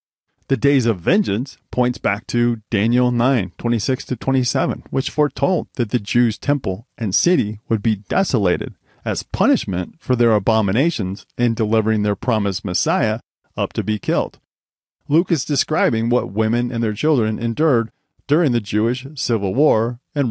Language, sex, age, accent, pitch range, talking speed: English, male, 40-59, American, 105-135 Hz, 150 wpm